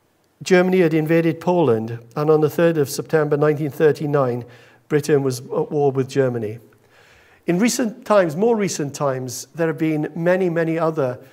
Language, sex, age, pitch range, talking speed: English, male, 50-69, 140-170 Hz, 155 wpm